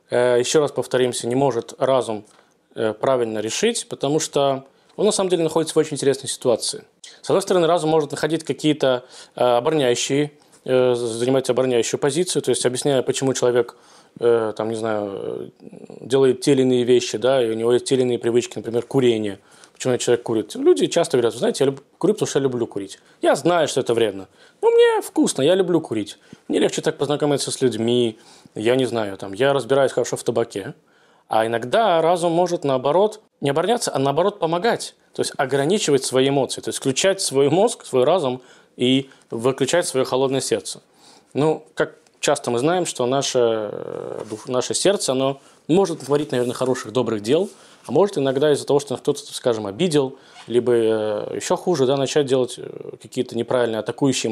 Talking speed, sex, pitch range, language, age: 170 wpm, male, 120-155 Hz, Russian, 20-39